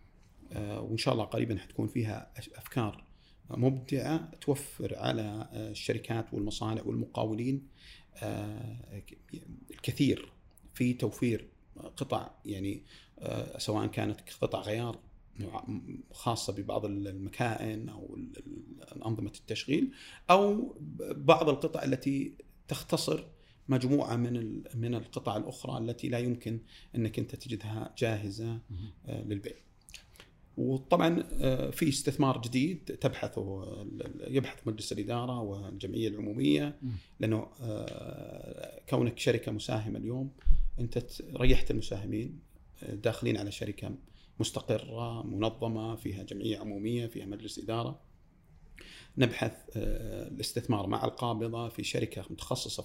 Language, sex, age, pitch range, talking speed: Arabic, male, 40-59, 105-130 Hz, 95 wpm